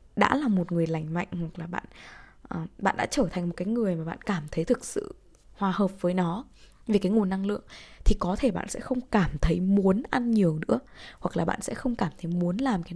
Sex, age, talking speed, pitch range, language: female, 20-39, 245 wpm, 170-230 Hz, Vietnamese